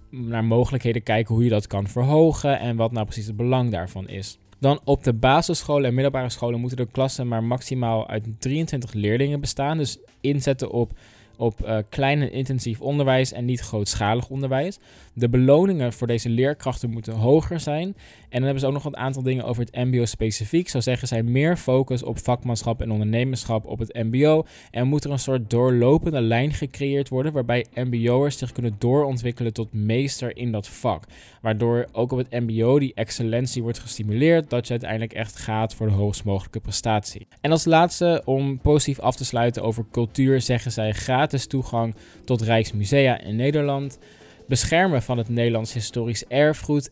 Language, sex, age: Dutch, male, 20-39